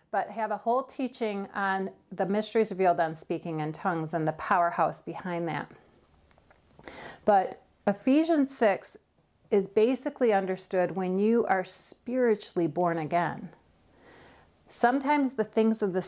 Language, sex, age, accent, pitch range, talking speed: English, female, 40-59, American, 175-215 Hz, 130 wpm